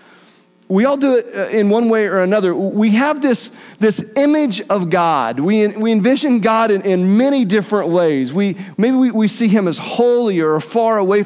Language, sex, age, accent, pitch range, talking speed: English, male, 40-59, American, 180-225 Hz, 190 wpm